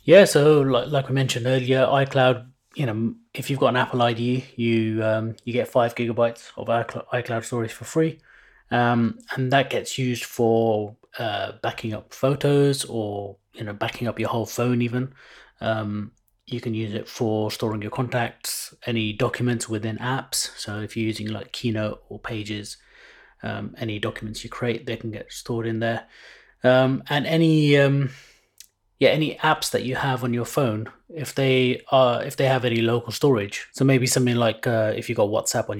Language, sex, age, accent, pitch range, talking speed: English, male, 30-49, British, 110-130 Hz, 190 wpm